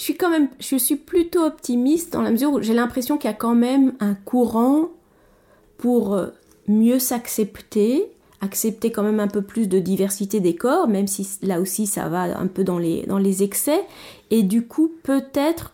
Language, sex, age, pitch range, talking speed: French, female, 30-49, 200-255 Hz, 185 wpm